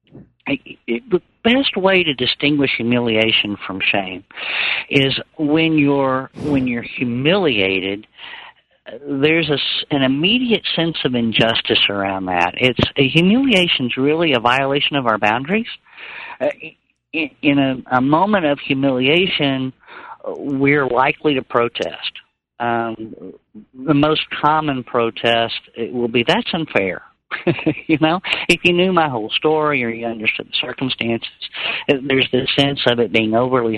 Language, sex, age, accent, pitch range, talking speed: English, male, 50-69, American, 115-150 Hz, 135 wpm